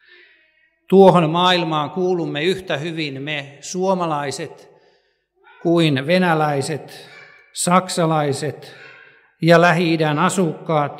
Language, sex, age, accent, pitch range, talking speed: Finnish, male, 60-79, native, 140-180 Hz, 70 wpm